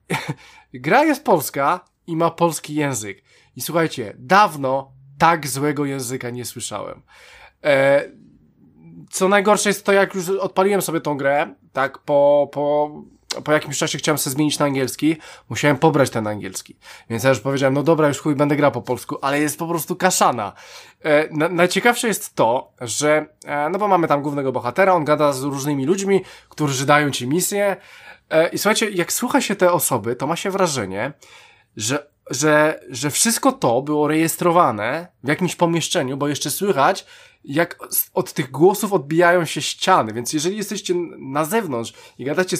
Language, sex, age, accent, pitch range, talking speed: Polish, male, 20-39, native, 140-190 Hz, 165 wpm